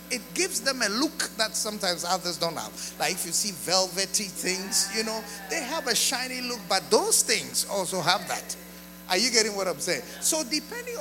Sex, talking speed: male, 200 wpm